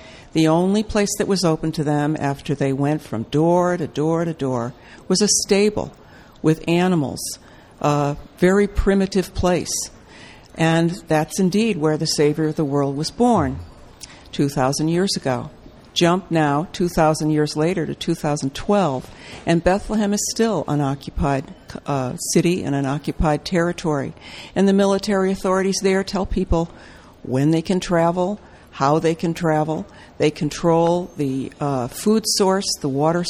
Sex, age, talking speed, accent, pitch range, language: female, 60-79, 150 wpm, American, 145-185 Hz, English